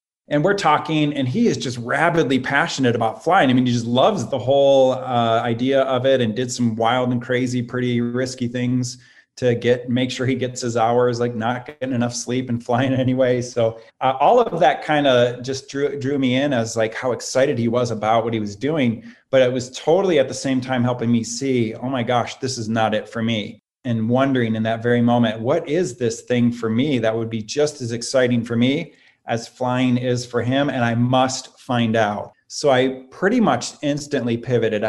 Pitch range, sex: 115-130 Hz, male